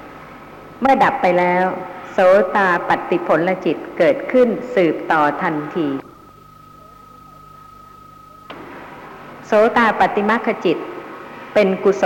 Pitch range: 175-245 Hz